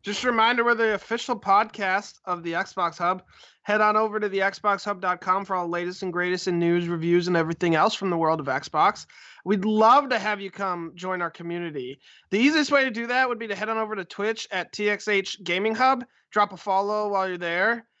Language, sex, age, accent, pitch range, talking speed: English, male, 20-39, American, 180-225 Hz, 220 wpm